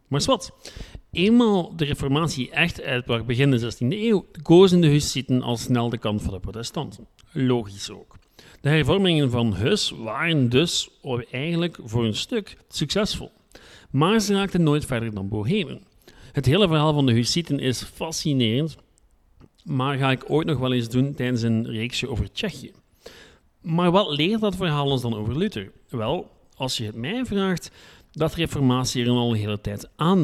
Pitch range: 120-165 Hz